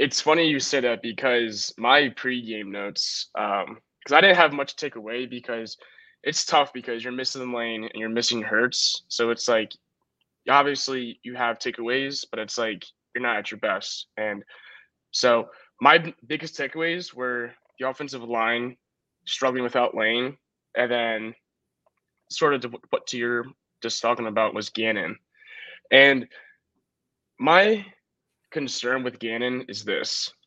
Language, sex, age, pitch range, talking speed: English, male, 20-39, 115-140 Hz, 145 wpm